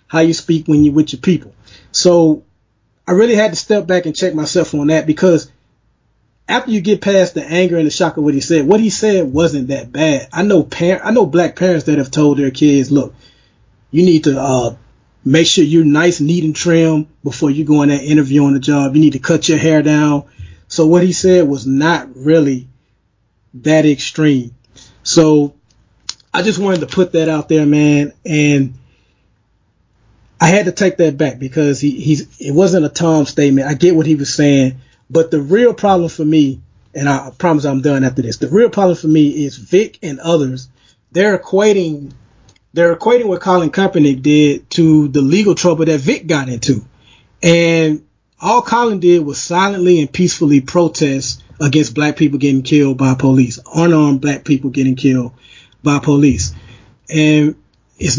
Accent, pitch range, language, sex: American, 135-170 Hz, English, male